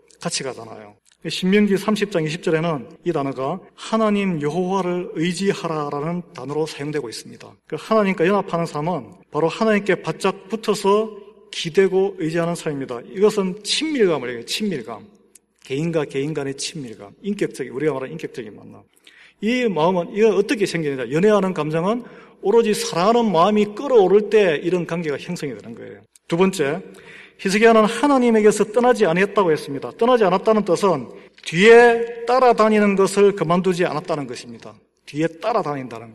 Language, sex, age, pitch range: Korean, male, 40-59, 160-210 Hz